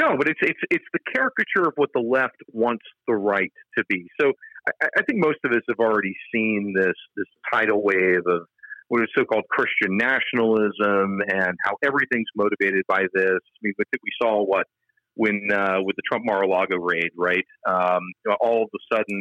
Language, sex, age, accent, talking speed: English, male, 40-59, American, 195 wpm